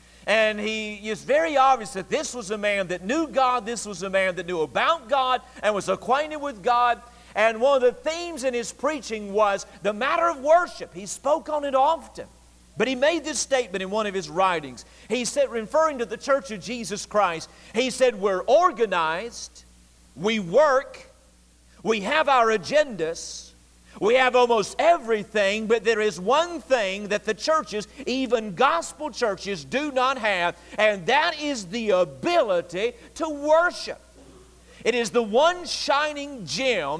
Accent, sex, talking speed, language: American, male, 170 wpm, English